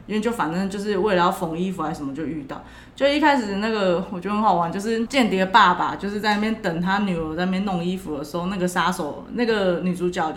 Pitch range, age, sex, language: 180-235 Hz, 20-39, female, Chinese